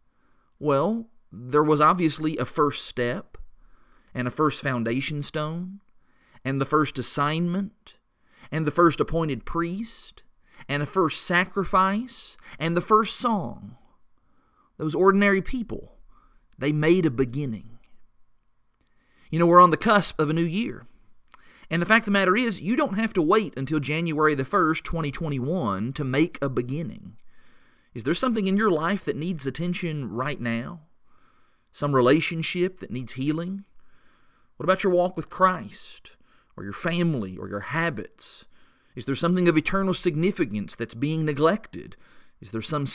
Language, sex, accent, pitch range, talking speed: English, male, American, 130-180 Hz, 150 wpm